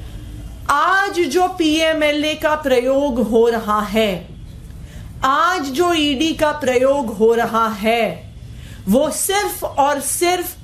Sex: female